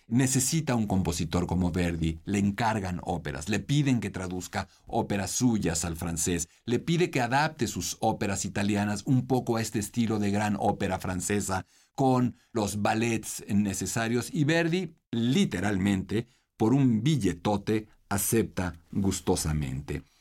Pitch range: 90-120 Hz